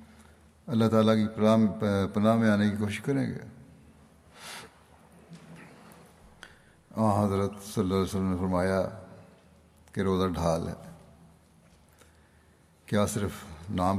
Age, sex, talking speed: 60-79, male, 110 wpm